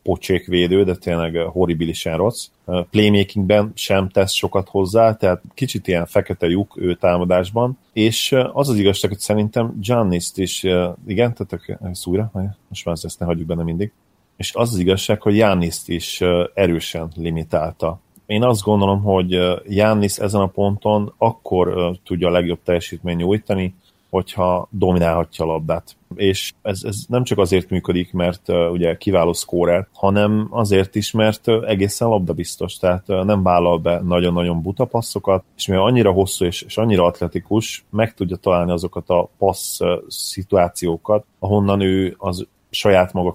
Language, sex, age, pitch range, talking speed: Hungarian, male, 30-49, 85-100 Hz, 150 wpm